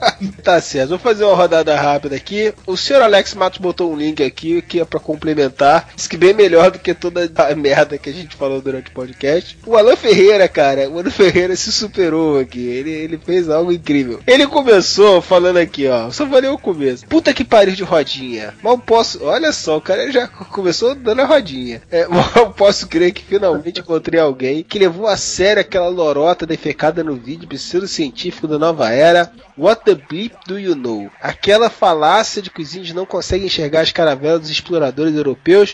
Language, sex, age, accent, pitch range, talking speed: Portuguese, male, 20-39, Brazilian, 155-215 Hz, 195 wpm